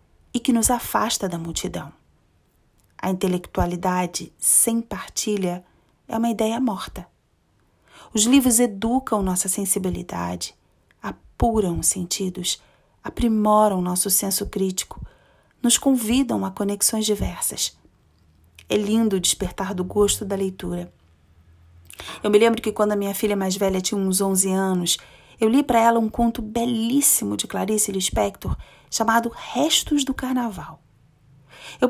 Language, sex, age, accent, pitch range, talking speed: Portuguese, female, 30-49, Brazilian, 185-230 Hz, 125 wpm